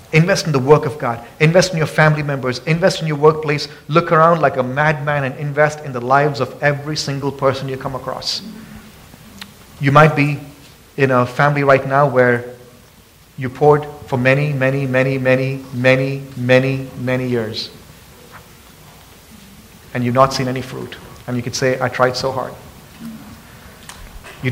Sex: male